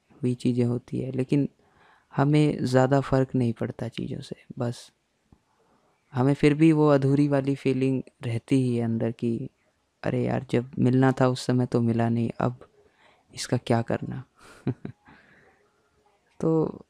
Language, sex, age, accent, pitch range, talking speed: Hindi, female, 20-39, native, 120-140 Hz, 140 wpm